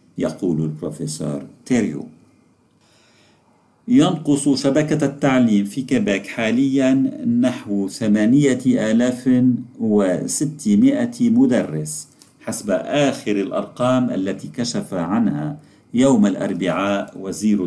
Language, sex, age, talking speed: Arabic, male, 50-69, 80 wpm